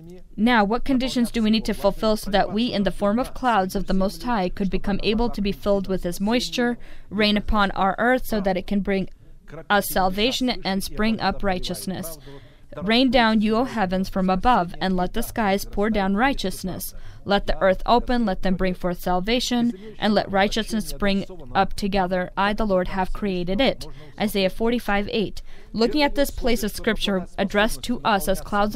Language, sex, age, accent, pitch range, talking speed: English, female, 20-39, American, 185-225 Hz, 195 wpm